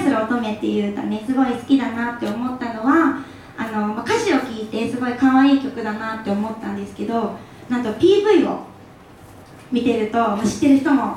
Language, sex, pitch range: Japanese, female, 220-290 Hz